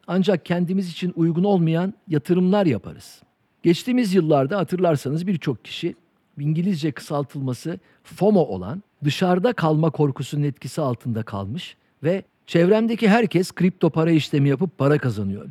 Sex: male